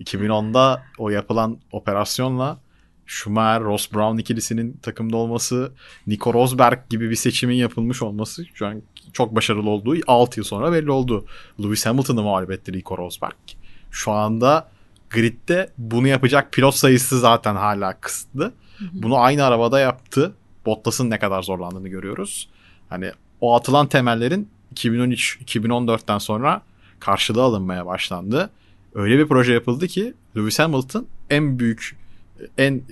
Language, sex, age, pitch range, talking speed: Turkish, male, 30-49, 100-130 Hz, 130 wpm